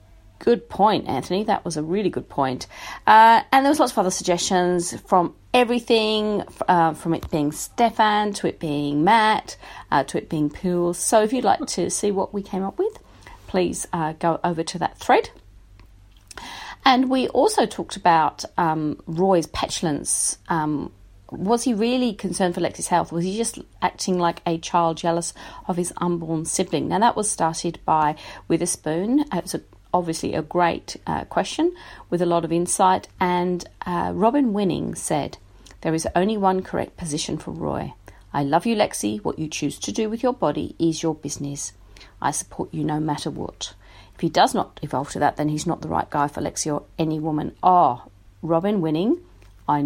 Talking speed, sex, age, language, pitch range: 185 wpm, female, 40-59, English, 155-210 Hz